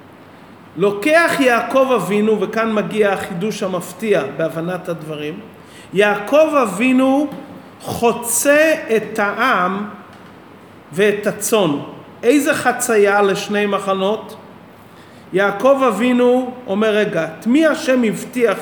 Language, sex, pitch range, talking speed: Hebrew, male, 200-260 Hz, 90 wpm